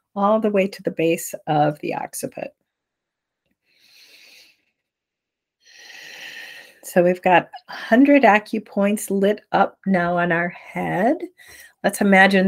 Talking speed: 105 wpm